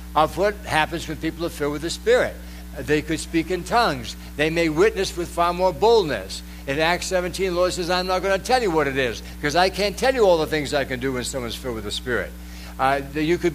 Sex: male